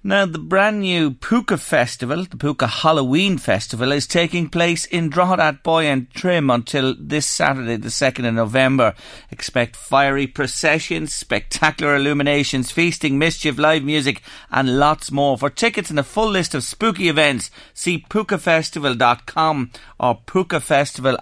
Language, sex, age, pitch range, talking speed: English, male, 40-59, 125-165 Hz, 145 wpm